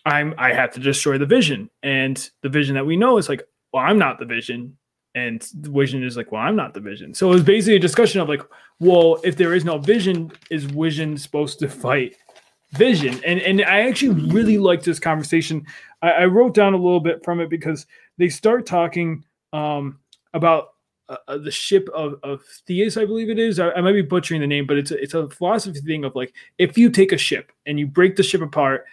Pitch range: 145-190 Hz